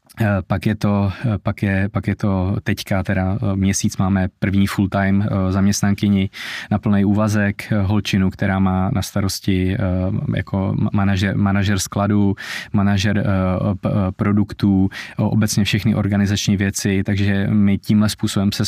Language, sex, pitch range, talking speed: Czech, male, 100-110 Hz, 125 wpm